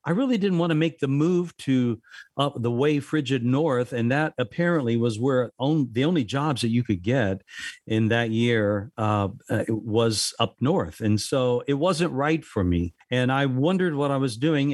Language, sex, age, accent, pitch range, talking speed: English, male, 50-69, American, 115-145 Hz, 185 wpm